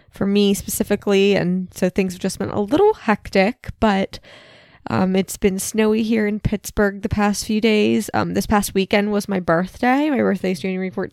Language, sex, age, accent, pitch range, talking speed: English, female, 10-29, American, 185-220 Hz, 190 wpm